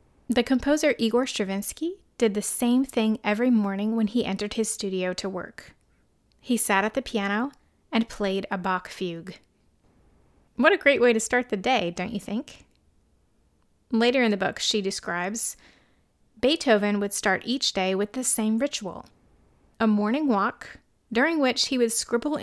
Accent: American